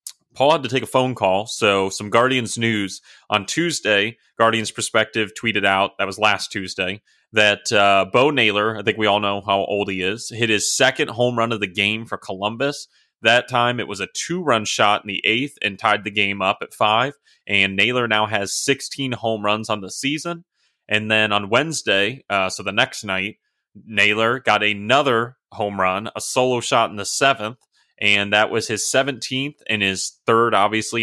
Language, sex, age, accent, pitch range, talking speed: English, male, 30-49, American, 100-120 Hz, 195 wpm